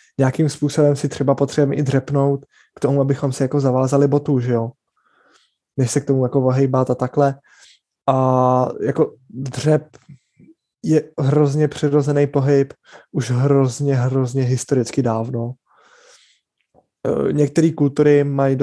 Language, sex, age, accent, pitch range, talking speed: Czech, male, 20-39, native, 130-145 Hz, 120 wpm